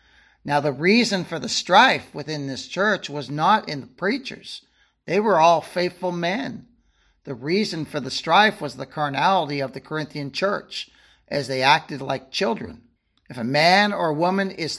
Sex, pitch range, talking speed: male, 150-195 Hz, 170 wpm